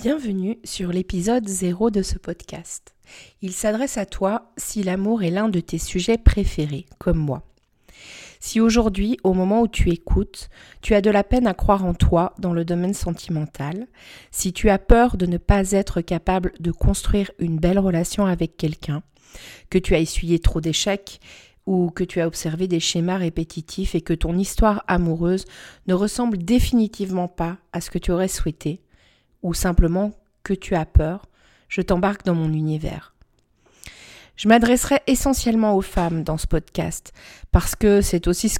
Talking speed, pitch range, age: 170 wpm, 170-210 Hz, 40-59